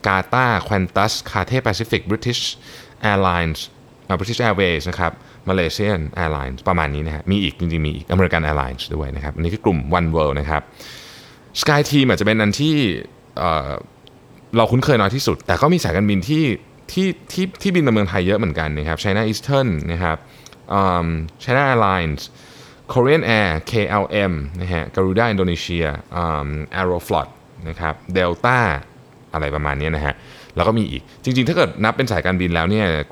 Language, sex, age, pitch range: Thai, male, 20-39, 80-120 Hz